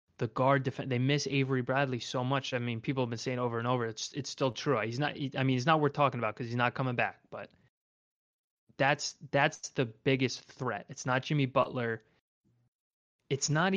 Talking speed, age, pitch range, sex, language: 215 wpm, 20-39, 120-140 Hz, male, English